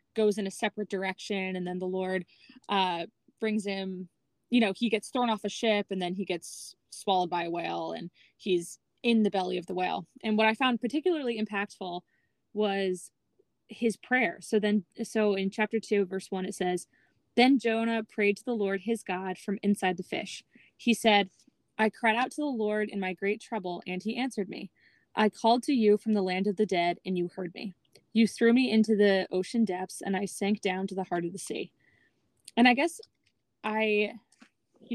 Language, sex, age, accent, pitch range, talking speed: English, female, 20-39, American, 190-225 Hz, 205 wpm